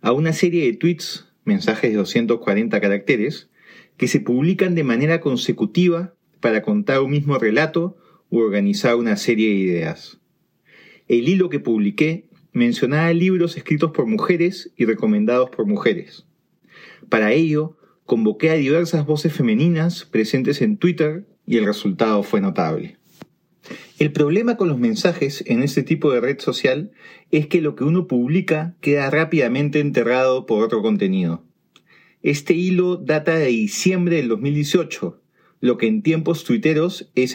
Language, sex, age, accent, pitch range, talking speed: Spanish, male, 30-49, Argentinian, 130-175 Hz, 145 wpm